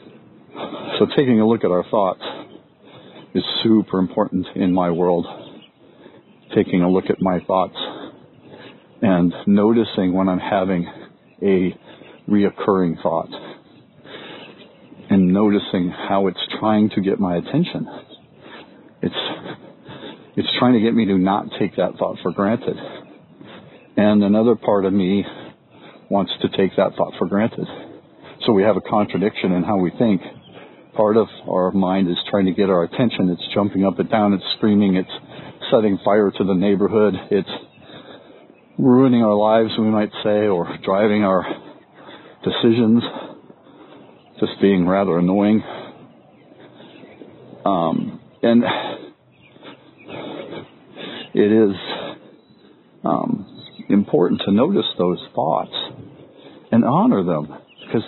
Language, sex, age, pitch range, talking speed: English, male, 50-69, 90-105 Hz, 125 wpm